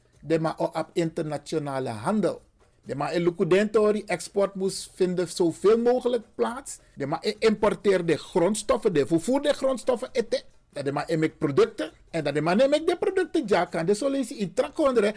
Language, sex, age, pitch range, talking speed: Dutch, male, 50-69, 175-255 Hz, 160 wpm